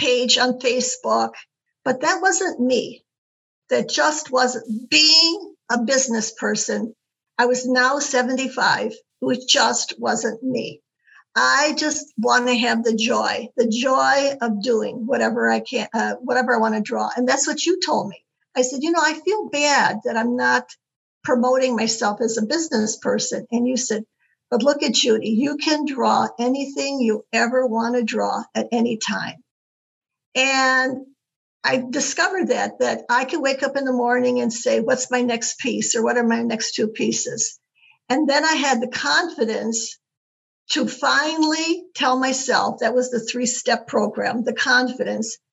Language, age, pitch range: English, 50-69, 235-270 Hz